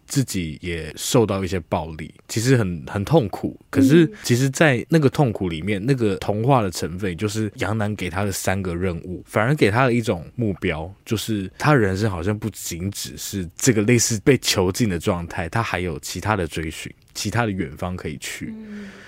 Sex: male